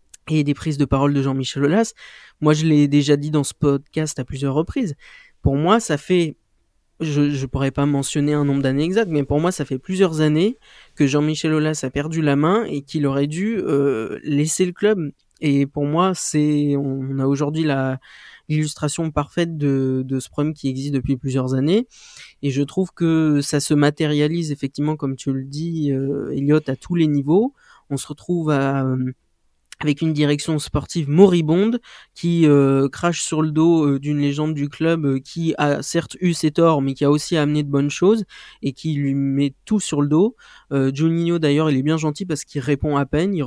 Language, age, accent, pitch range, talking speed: French, 20-39, French, 140-165 Hz, 205 wpm